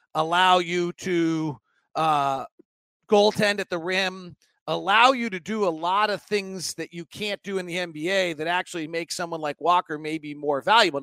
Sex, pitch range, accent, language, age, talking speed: male, 155-190 Hz, American, English, 40-59, 175 wpm